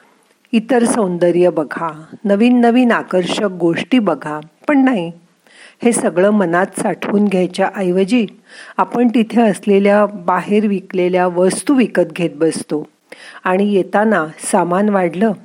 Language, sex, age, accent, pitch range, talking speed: Marathi, female, 40-59, native, 175-230 Hz, 110 wpm